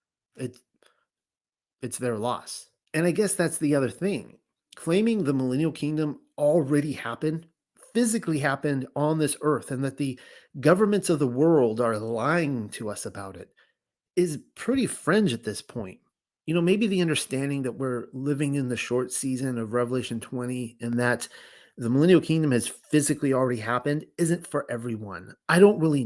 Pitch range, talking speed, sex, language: 120-160 Hz, 160 wpm, male, English